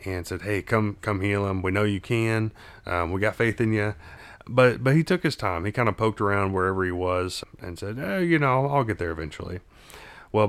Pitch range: 90-110 Hz